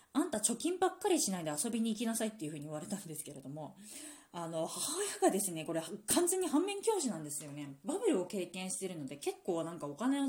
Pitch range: 155-220 Hz